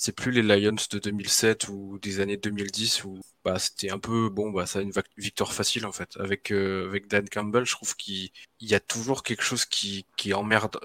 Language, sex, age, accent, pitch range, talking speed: French, male, 20-39, French, 100-115 Hz, 230 wpm